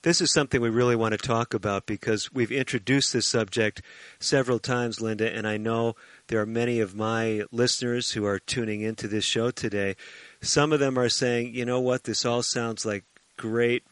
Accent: American